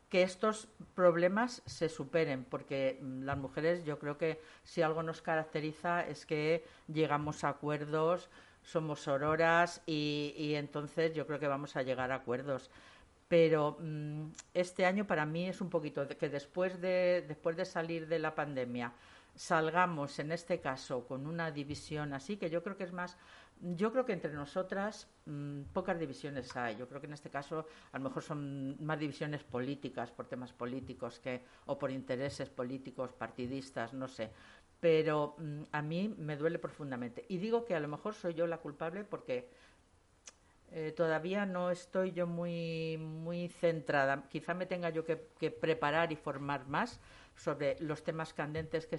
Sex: female